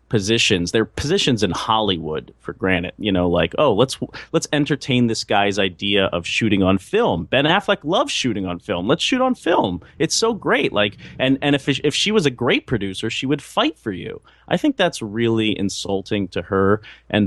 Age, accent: 30-49, American